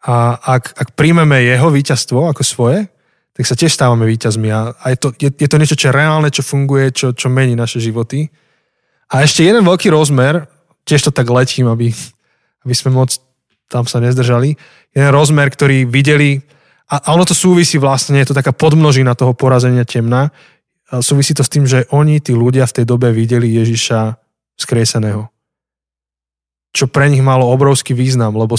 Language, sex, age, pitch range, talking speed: Slovak, male, 20-39, 120-145 Hz, 180 wpm